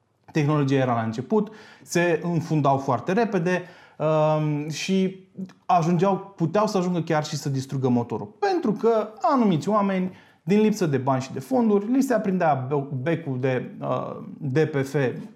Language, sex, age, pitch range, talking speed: Romanian, male, 30-49, 140-195 Hz, 145 wpm